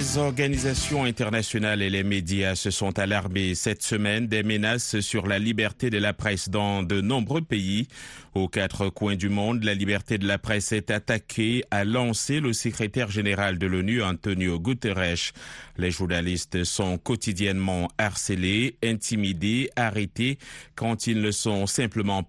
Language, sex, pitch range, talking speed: French, male, 95-115 Hz, 150 wpm